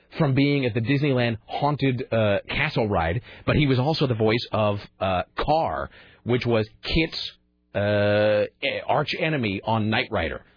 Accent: American